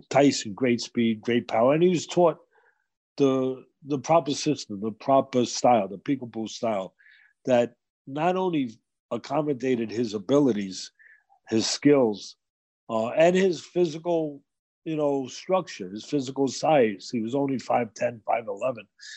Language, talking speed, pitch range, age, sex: English, 130 wpm, 120-155 Hz, 50-69, male